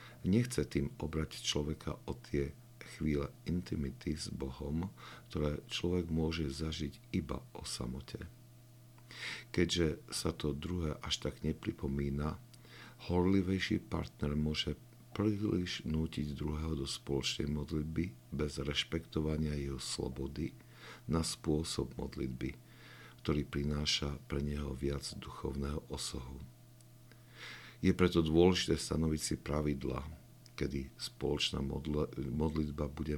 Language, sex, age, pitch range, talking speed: Slovak, male, 50-69, 70-95 Hz, 105 wpm